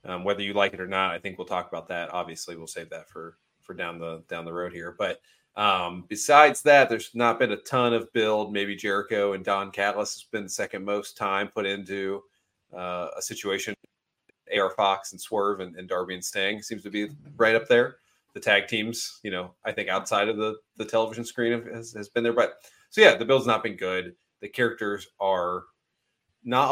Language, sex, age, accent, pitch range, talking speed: English, male, 30-49, American, 90-110 Hz, 215 wpm